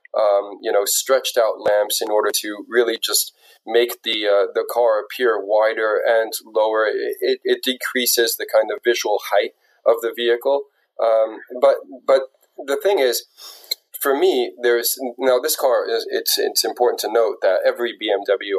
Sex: male